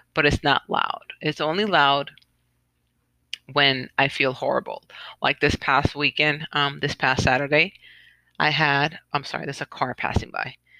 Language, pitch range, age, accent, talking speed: English, 130-145 Hz, 30-49, American, 155 wpm